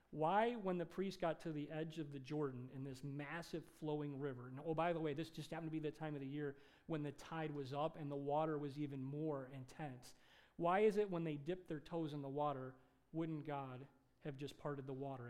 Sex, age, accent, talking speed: male, 40-59, American, 240 wpm